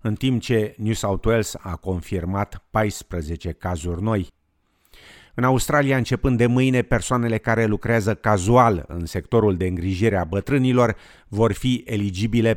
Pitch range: 95-115 Hz